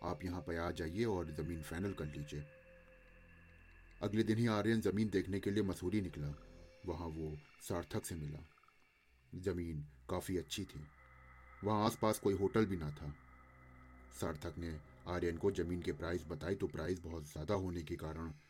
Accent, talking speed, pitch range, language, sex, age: native, 165 wpm, 75-100 Hz, Hindi, male, 30-49